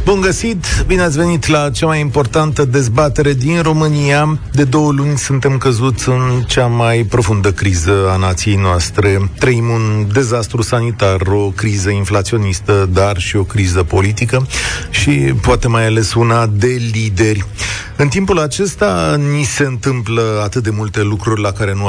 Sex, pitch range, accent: male, 100-130 Hz, native